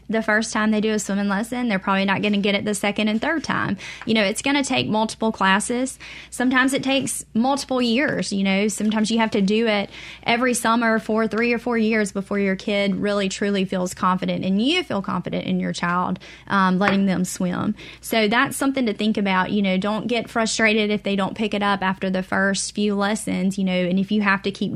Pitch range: 190-225 Hz